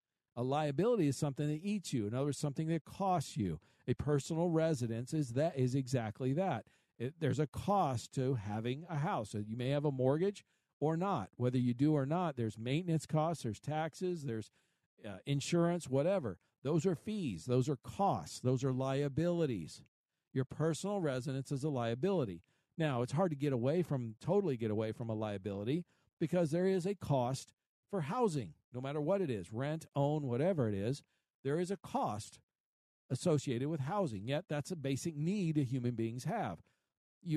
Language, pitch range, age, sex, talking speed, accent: English, 125-165 Hz, 50-69, male, 180 wpm, American